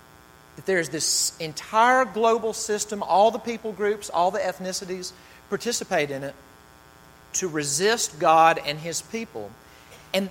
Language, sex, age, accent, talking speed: English, male, 40-59, American, 140 wpm